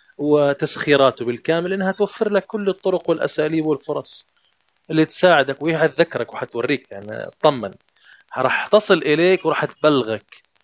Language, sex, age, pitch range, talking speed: Arabic, male, 30-49, 130-165 Hz, 120 wpm